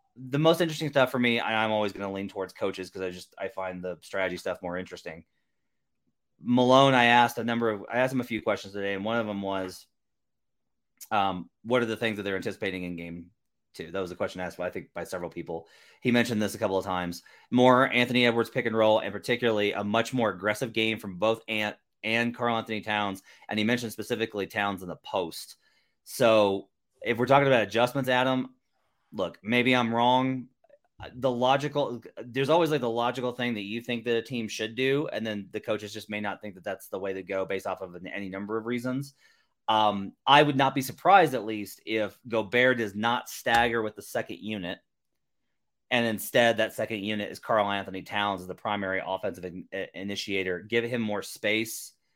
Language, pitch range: English, 100-120 Hz